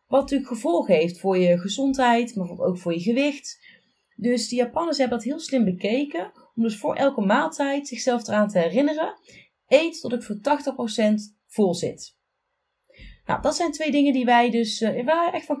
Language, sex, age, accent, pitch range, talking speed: Dutch, female, 30-49, Dutch, 210-285 Hz, 185 wpm